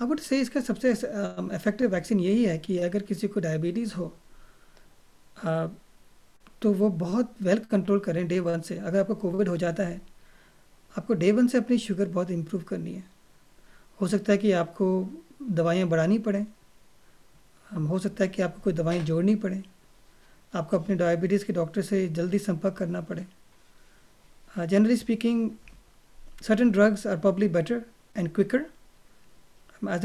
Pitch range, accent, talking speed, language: 180-210 Hz, native, 155 wpm, Hindi